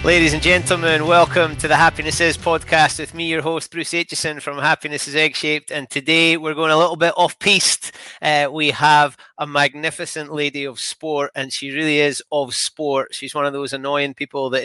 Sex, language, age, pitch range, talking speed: male, English, 30-49, 135-155 Hz, 195 wpm